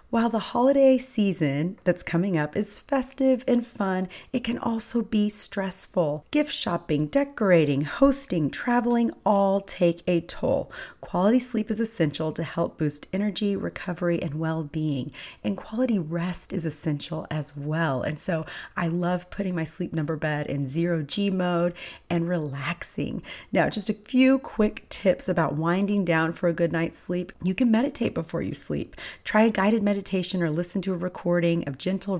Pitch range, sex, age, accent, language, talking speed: 160-205 Hz, female, 30-49, American, English, 170 wpm